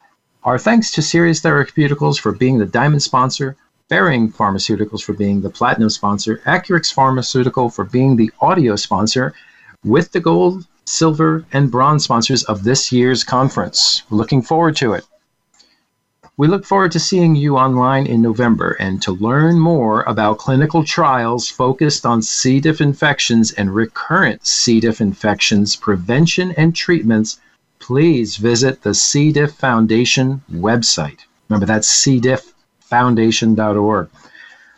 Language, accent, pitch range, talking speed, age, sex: English, American, 115-150 Hz, 135 wpm, 40-59, male